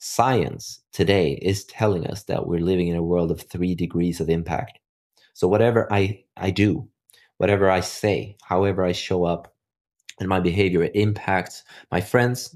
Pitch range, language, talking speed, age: 85-105 Hz, English, 165 wpm, 20-39